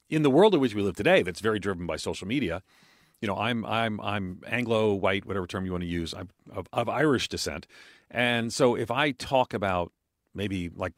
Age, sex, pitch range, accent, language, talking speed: 40-59, male, 90-115 Hz, American, English, 220 wpm